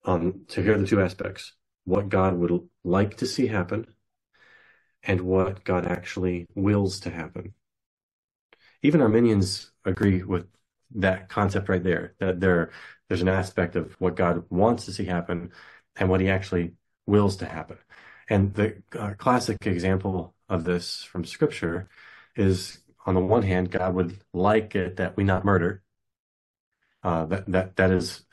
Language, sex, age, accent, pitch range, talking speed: English, male, 30-49, American, 90-105 Hz, 160 wpm